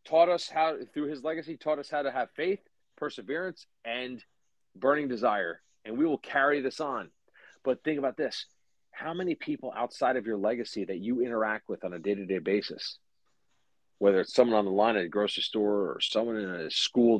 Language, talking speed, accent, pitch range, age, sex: English, 195 wpm, American, 105-135 Hz, 40-59, male